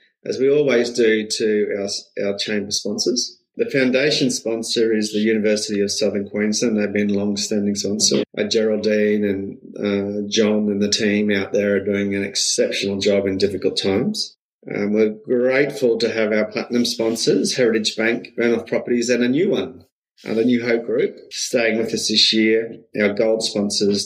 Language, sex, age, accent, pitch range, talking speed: English, male, 30-49, Australian, 100-115 Hz, 170 wpm